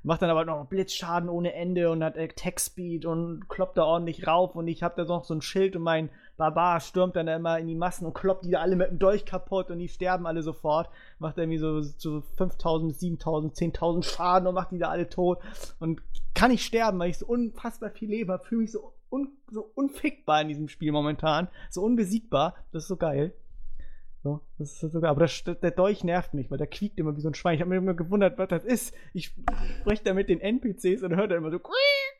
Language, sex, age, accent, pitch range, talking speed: English, male, 30-49, German, 160-195 Hz, 240 wpm